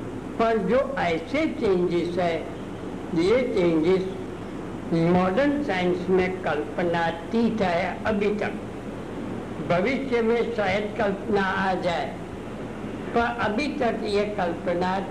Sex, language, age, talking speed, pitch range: female, Hindi, 60-79, 105 wpm, 180-225 Hz